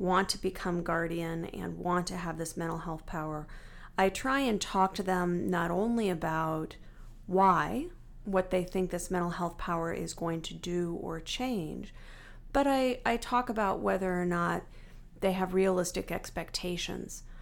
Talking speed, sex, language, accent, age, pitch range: 160 wpm, female, English, American, 40-59, 175-200 Hz